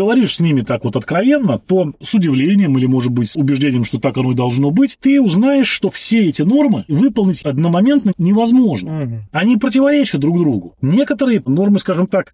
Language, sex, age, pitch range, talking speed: Russian, male, 30-49, 145-205 Hz, 180 wpm